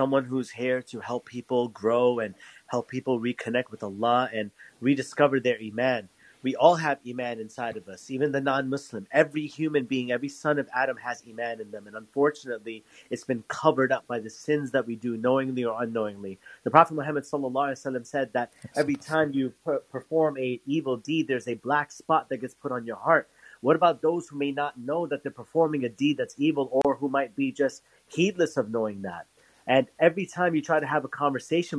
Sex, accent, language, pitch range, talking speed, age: male, American, English, 125-155 Hz, 205 wpm, 30-49